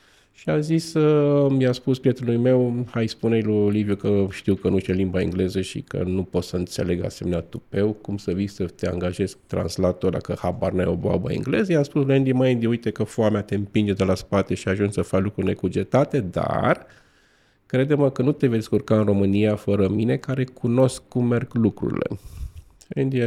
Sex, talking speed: male, 200 wpm